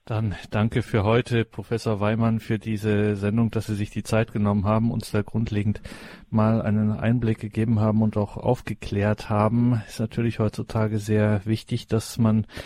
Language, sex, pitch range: German, male, 105-115 Hz